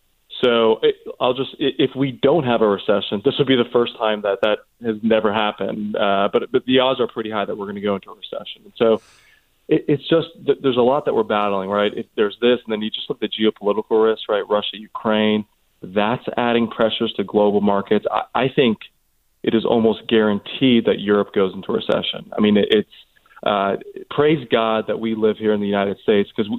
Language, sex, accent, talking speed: English, male, American, 225 wpm